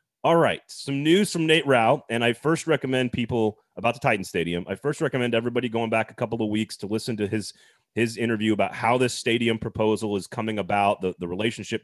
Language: English